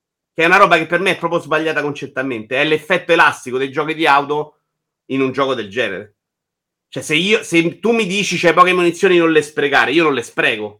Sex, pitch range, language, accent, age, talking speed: male, 130-165 Hz, Italian, native, 30-49, 220 wpm